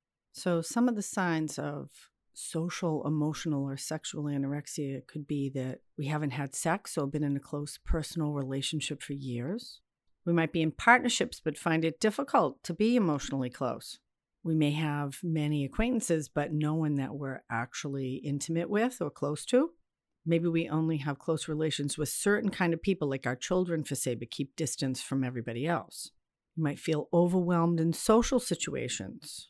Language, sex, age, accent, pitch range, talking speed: English, female, 50-69, American, 145-175 Hz, 175 wpm